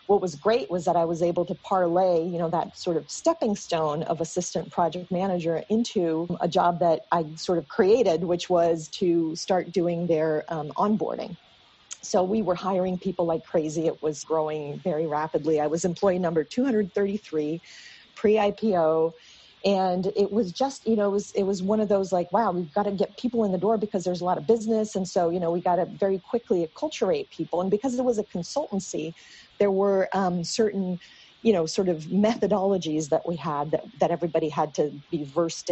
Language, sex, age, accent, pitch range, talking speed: English, female, 40-59, American, 165-205 Hz, 200 wpm